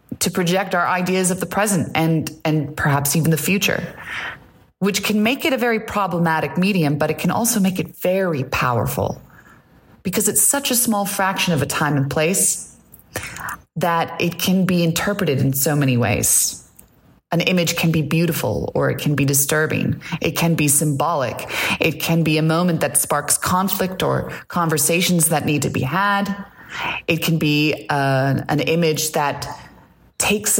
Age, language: 30-49, English